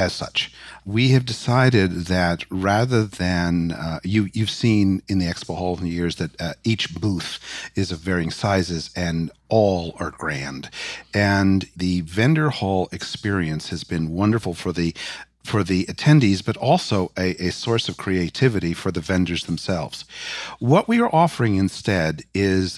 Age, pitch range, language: 50-69, 90-115 Hz, English